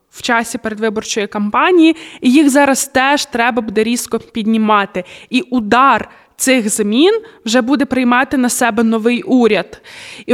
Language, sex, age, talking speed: Ukrainian, female, 20-39, 140 wpm